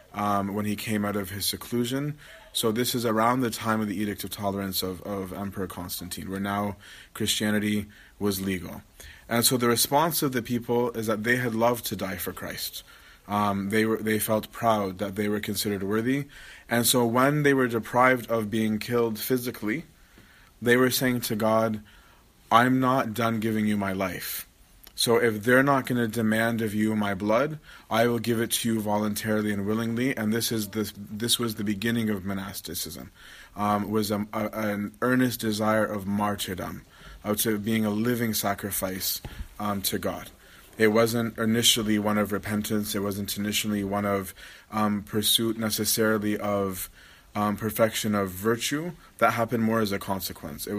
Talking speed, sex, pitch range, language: 180 wpm, male, 100-115 Hz, English